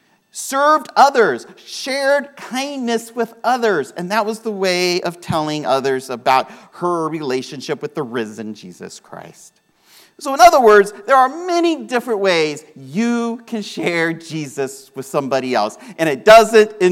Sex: male